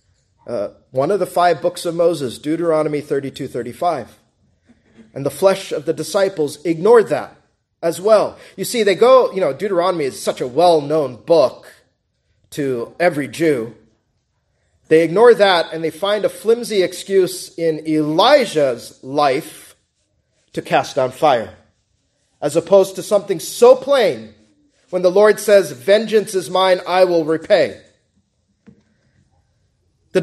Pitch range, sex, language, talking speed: 145-190 Hz, male, English, 135 wpm